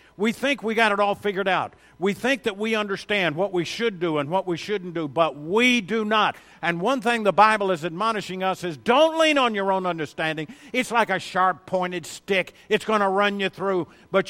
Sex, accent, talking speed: male, American, 225 wpm